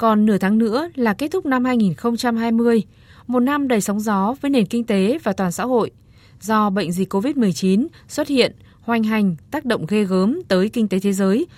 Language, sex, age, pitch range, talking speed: Vietnamese, female, 20-39, 190-240 Hz, 200 wpm